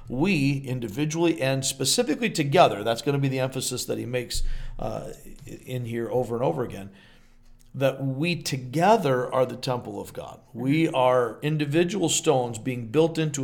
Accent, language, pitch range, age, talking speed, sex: American, English, 120-150 Hz, 50-69, 160 wpm, male